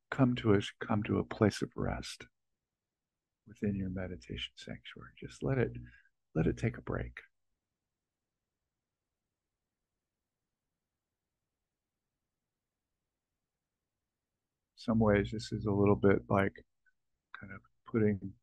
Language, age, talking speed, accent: English, 50-69, 105 wpm, American